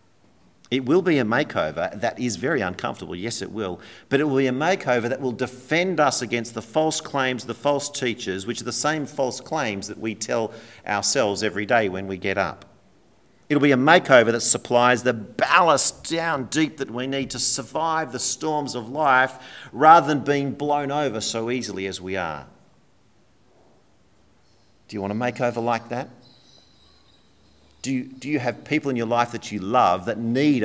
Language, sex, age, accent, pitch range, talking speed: English, male, 40-59, Australian, 100-130 Hz, 190 wpm